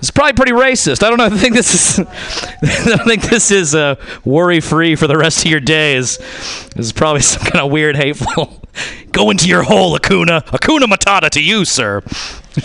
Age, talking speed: 40-59, 180 wpm